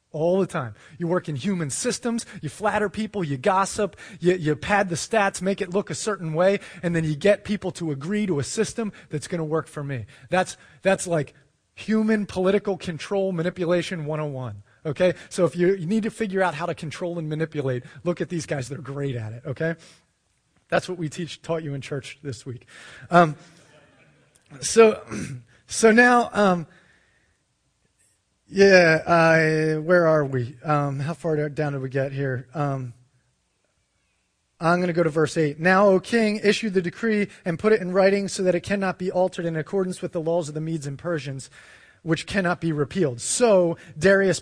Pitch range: 145-185 Hz